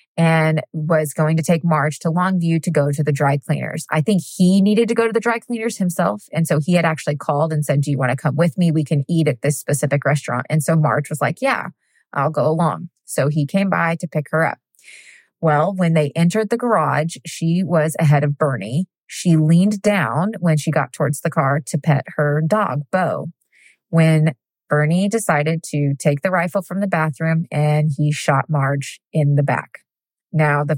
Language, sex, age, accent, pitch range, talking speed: English, female, 20-39, American, 150-185 Hz, 210 wpm